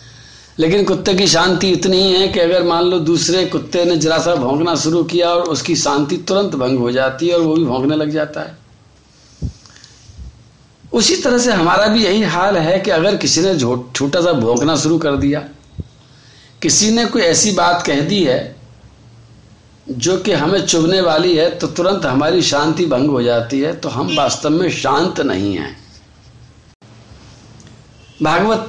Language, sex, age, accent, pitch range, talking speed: Hindi, male, 50-69, native, 135-200 Hz, 170 wpm